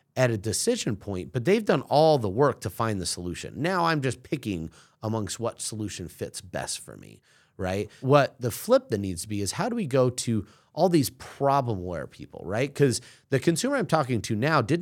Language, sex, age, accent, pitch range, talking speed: English, male, 30-49, American, 100-145 Hz, 215 wpm